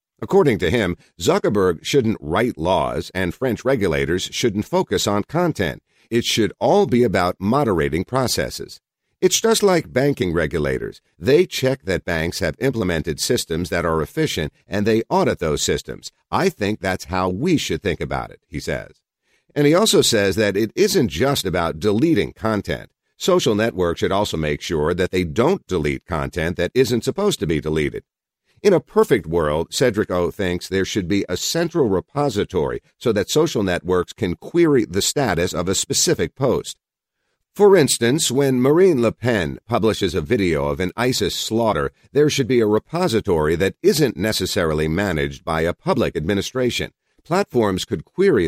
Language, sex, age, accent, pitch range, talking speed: English, male, 50-69, American, 85-130 Hz, 165 wpm